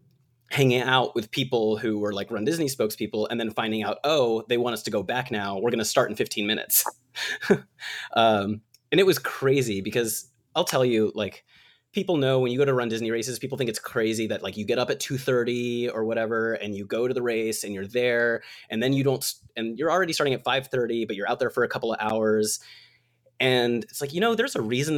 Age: 30-49